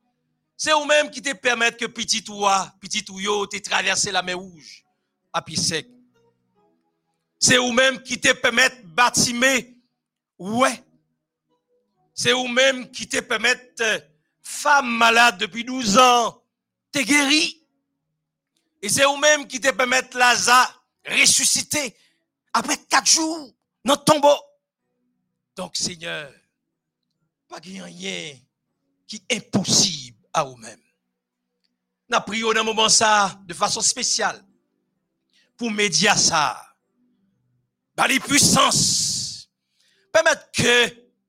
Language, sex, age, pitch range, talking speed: French, male, 50-69, 160-250 Hz, 120 wpm